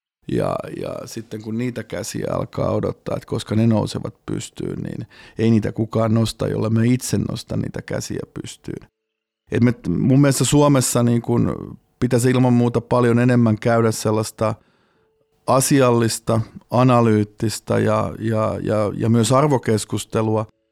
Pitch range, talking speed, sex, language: 110-125 Hz, 135 wpm, male, Finnish